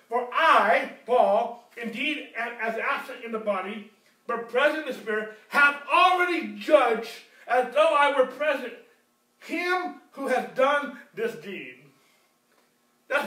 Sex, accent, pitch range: male, American, 215-295 Hz